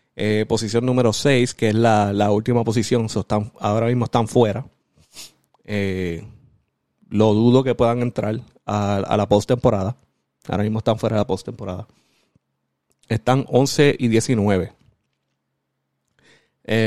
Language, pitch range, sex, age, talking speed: Spanish, 105-125 Hz, male, 30-49, 135 wpm